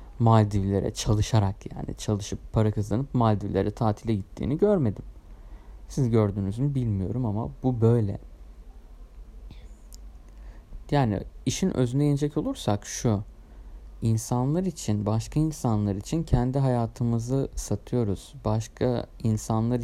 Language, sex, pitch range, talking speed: Turkish, male, 100-130 Hz, 100 wpm